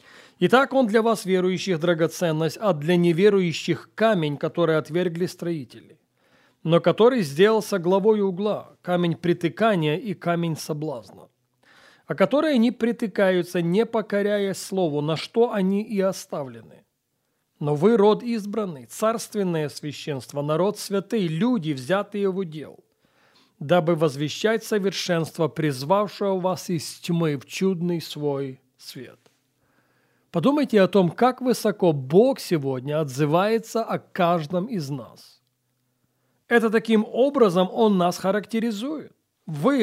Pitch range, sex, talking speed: 160-215 Hz, male, 115 wpm